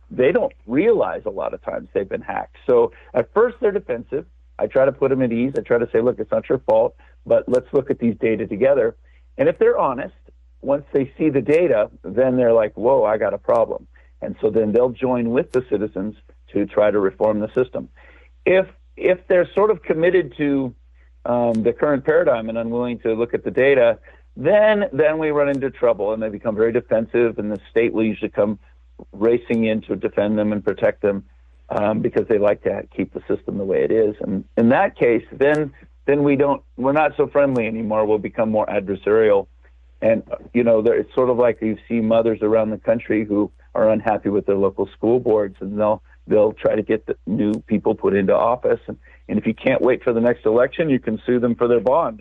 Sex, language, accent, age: male, English, American, 50-69